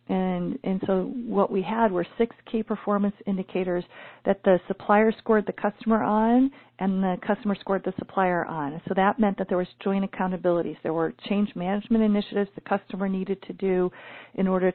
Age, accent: 40-59, American